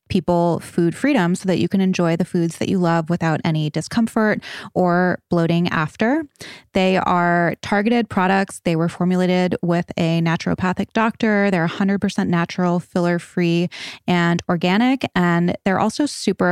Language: English